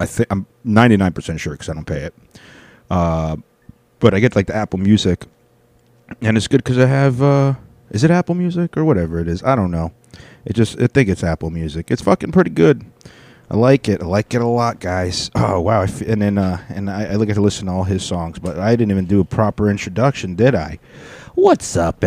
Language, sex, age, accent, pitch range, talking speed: English, male, 30-49, American, 95-120 Hz, 225 wpm